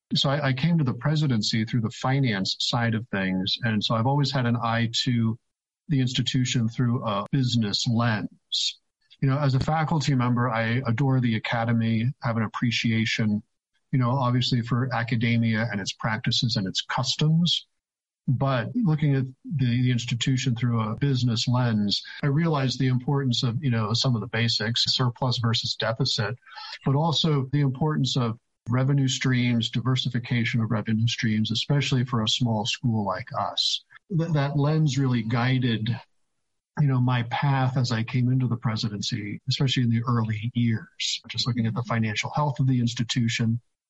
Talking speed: 165 wpm